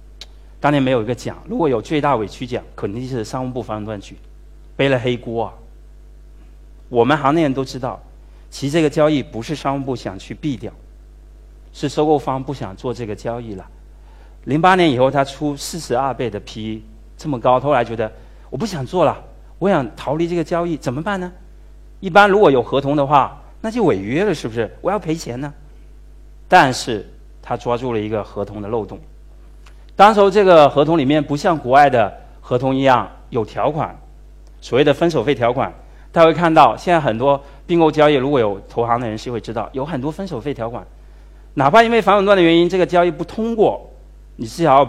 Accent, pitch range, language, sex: native, 100-150 Hz, Chinese, male